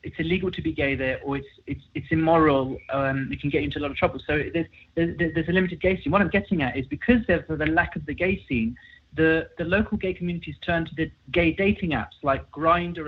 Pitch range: 150-190 Hz